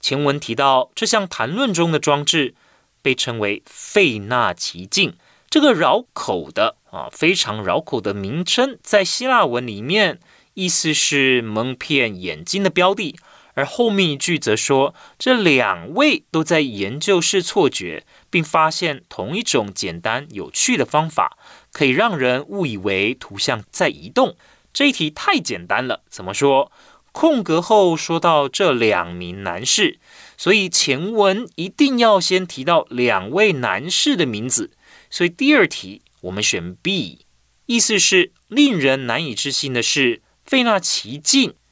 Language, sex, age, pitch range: Chinese, male, 30-49, 125-200 Hz